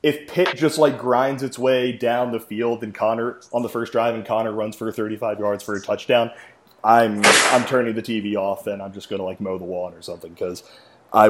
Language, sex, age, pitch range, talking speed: English, male, 20-39, 110-135 Hz, 235 wpm